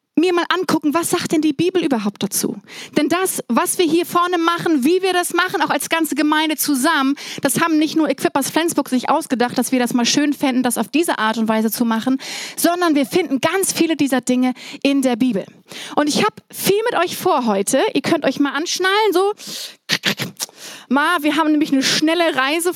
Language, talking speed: German, 210 wpm